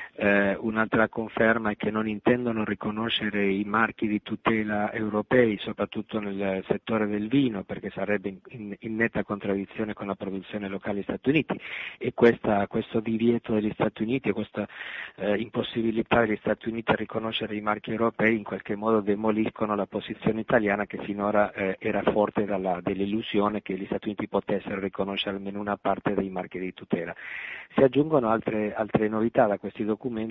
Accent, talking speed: native, 170 wpm